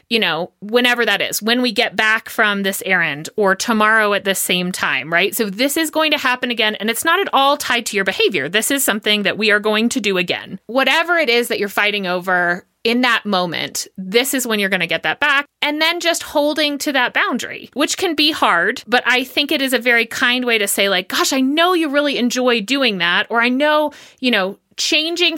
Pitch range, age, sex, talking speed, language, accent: 210-275 Hz, 30-49, female, 240 wpm, English, American